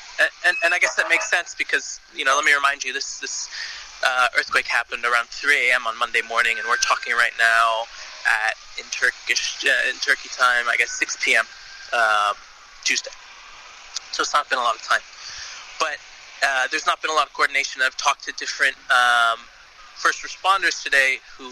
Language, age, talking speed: English, 20-39, 195 wpm